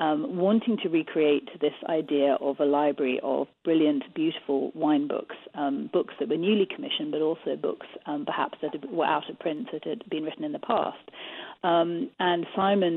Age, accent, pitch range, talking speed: 40-59, British, 155-215 Hz, 185 wpm